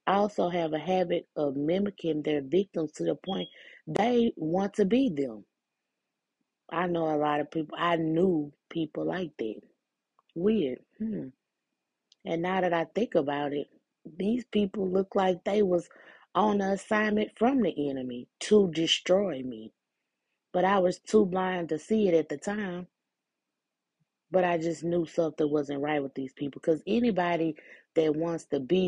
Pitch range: 150-190 Hz